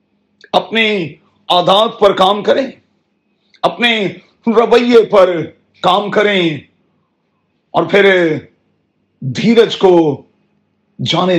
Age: 50-69